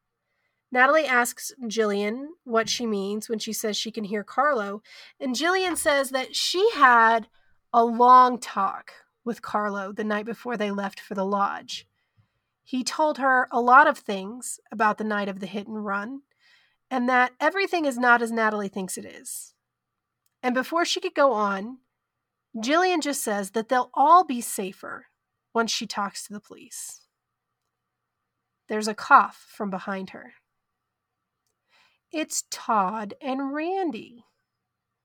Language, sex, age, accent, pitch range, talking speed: English, female, 30-49, American, 210-290 Hz, 150 wpm